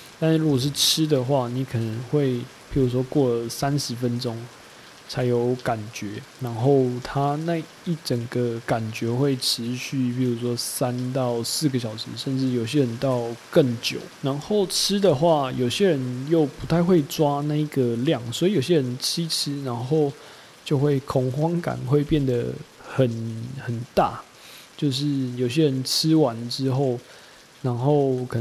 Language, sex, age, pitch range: Chinese, male, 20-39, 120-145 Hz